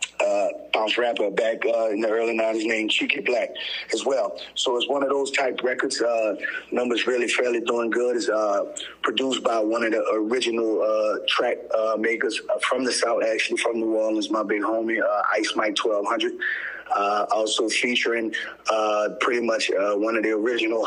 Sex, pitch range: male, 110-120 Hz